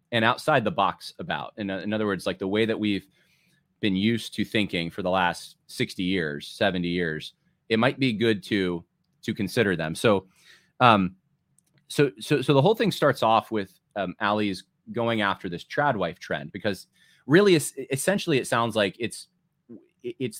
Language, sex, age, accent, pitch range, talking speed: English, male, 30-49, American, 100-145 Hz, 175 wpm